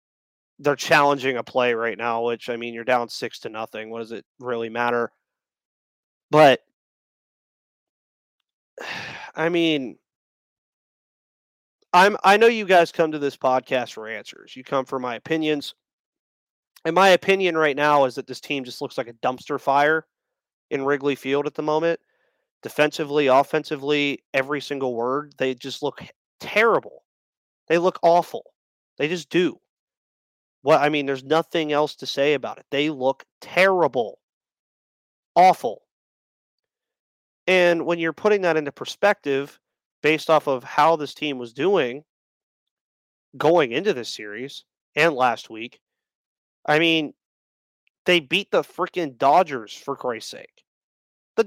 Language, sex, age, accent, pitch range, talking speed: English, male, 30-49, American, 130-175 Hz, 140 wpm